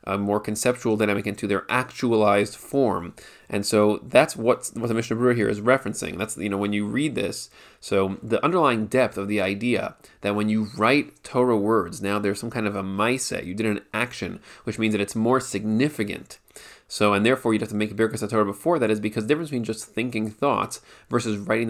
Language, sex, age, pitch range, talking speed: English, male, 30-49, 105-120 Hz, 215 wpm